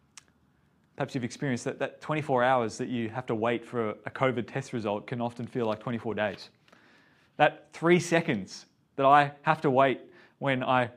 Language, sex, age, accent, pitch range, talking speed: English, male, 20-39, Australian, 130-170 Hz, 180 wpm